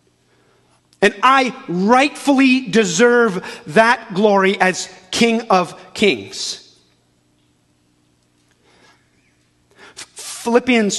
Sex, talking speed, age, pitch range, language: male, 60 wpm, 30-49, 165-215 Hz, English